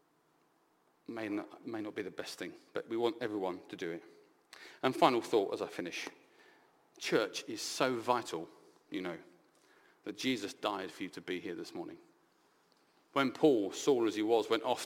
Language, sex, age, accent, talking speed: English, male, 40-59, British, 180 wpm